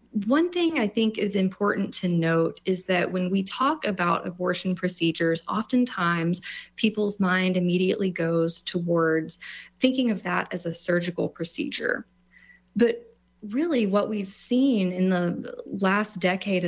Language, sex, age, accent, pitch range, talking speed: English, female, 20-39, American, 180-210 Hz, 135 wpm